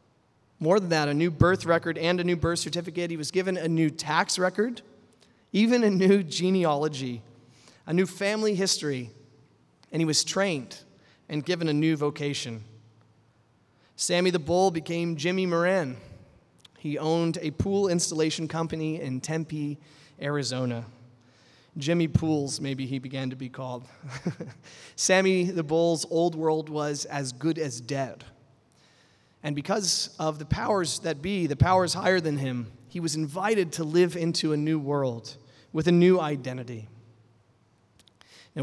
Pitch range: 135-175 Hz